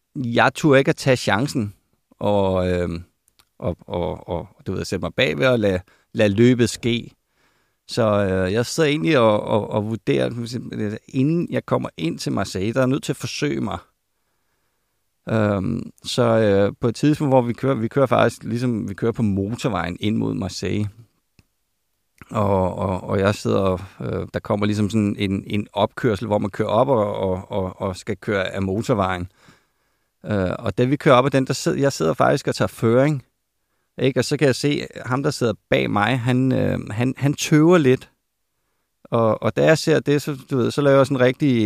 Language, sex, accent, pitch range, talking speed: Danish, male, native, 105-135 Hz, 195 wpm